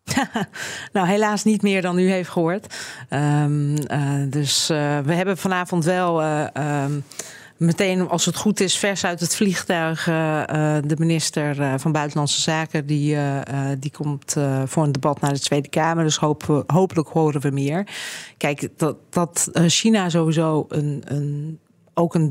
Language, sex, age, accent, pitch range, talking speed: Dutch, female, 40-59, Dutch, 145-175 Hz, 170 wpm